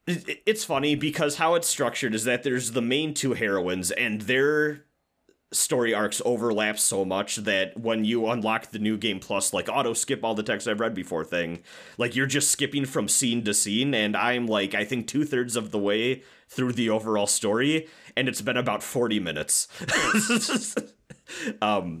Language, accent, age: English, American, 30-49